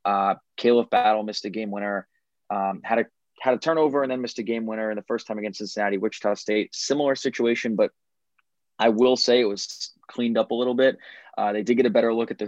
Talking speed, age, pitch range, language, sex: 235 wpm, 20-39, 105-120 Hz, English, male